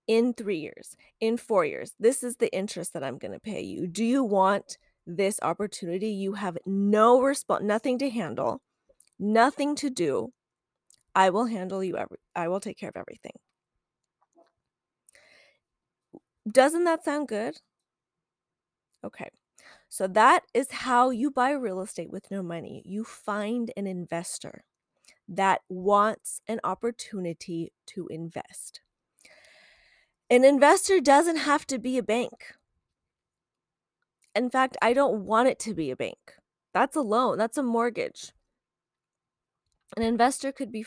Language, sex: English, female